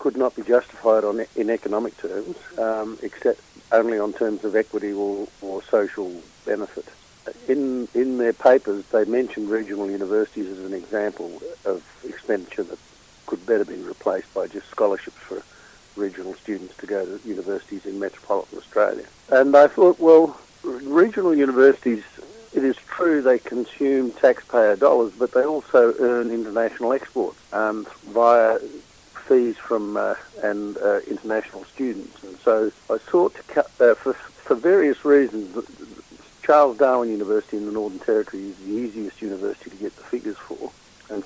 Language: English